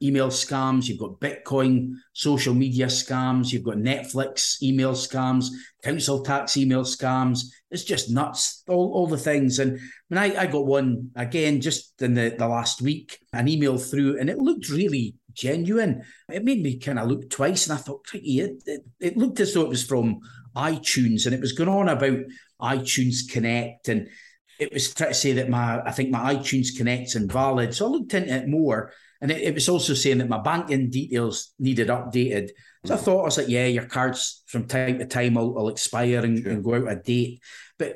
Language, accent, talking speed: English, British, 200 wpm